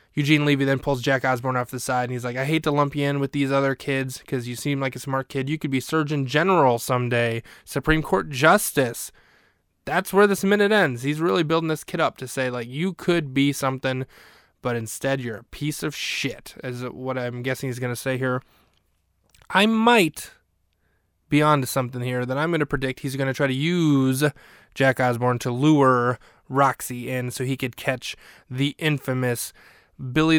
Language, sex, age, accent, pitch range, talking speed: English, male, 20-39, American, 125-145 Hz, 200 wpm